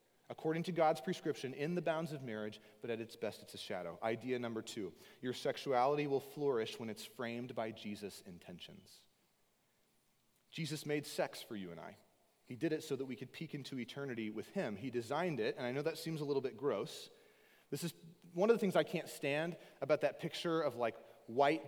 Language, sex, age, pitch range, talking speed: English, male, 30-49, 135-170 Hz, 210 wpm